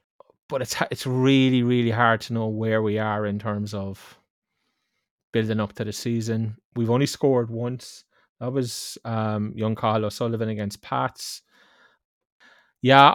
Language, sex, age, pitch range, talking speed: English, male, 20-39, 115-135 Hz, 145 wpm